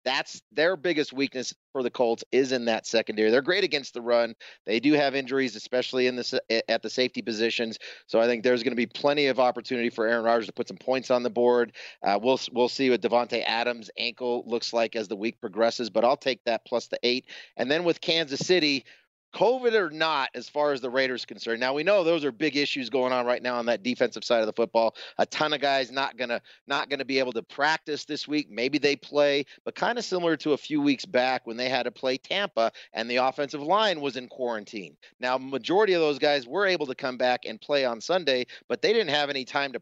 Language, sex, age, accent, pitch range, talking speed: English, male, 30-49, American, 120-150 Hz, 240 wpm